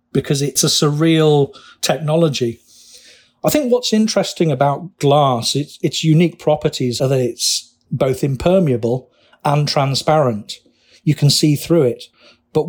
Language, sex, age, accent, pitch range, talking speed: English, male, 40-59, British, 130-155 Hz, 130 wpm